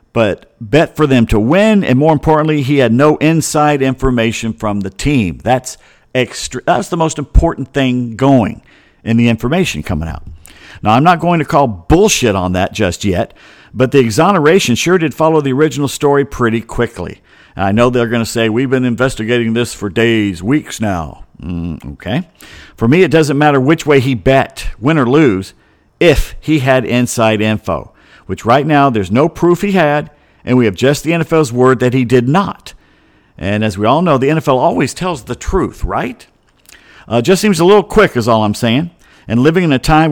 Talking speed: 195 wpm